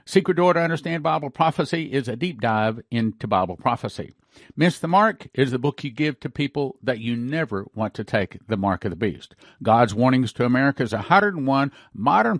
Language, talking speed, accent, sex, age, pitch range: English, 200 wpm, American, male, 50-69, 120-150 Hz